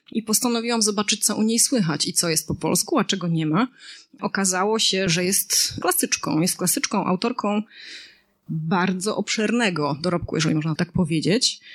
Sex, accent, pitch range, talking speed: female, native, 180-215 Hz, 160 wpm